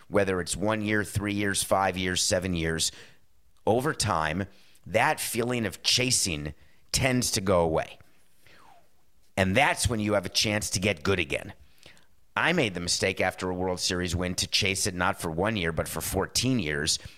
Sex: male